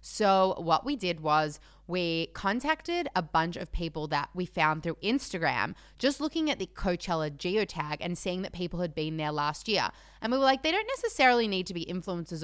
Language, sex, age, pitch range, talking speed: English, female, 20-39, 165-215 Hz, 205 wpm